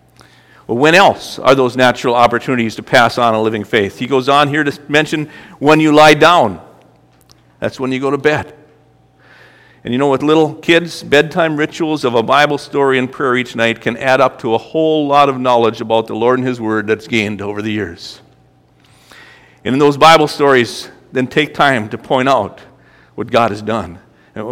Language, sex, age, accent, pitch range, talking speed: English, male, 50-69, American, 110-140 Hz, 200 wpm